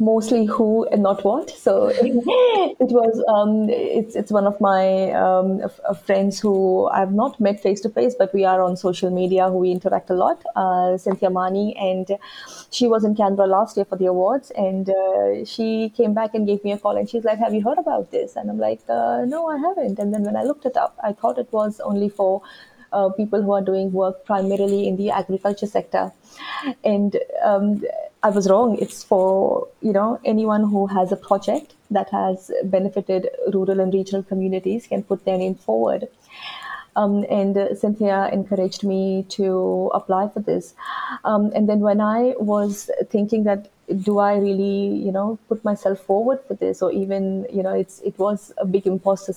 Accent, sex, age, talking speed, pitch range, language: Indian, female, 30-49, 195 wpm, 190-215 Hz, English